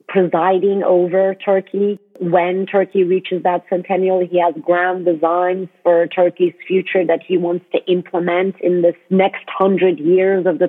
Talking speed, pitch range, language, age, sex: 150 wpm, 175-210 Hz, English, 40-59, female